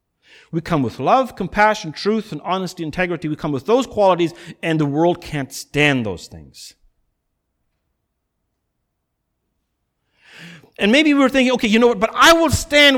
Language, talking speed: English, 155 wpm